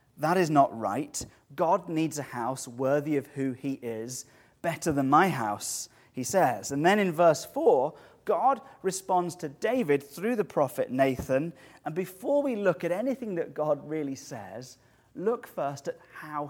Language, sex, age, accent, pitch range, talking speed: English, male, 30-49, British, 135-170 Hz, 165 wpm